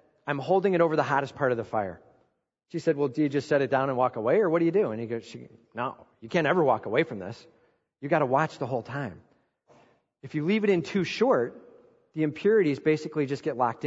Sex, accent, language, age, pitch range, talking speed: male, American, English, 40-59, 125-170 Hz, 250 wpm